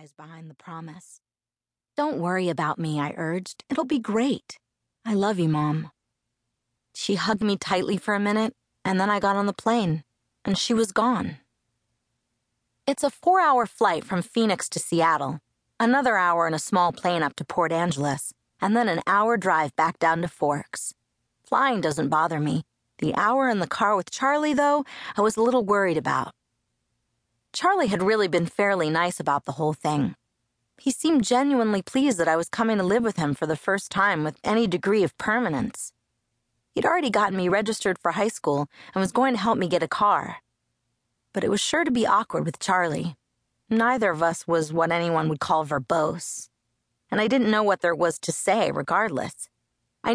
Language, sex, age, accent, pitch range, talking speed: English, female, 30-49, American, 160-225 Hz, 185 wpm